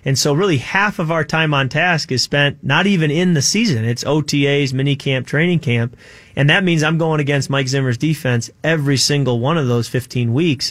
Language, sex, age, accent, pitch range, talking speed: English, male, 30-49, American, 120-145 Hz, 215 wpm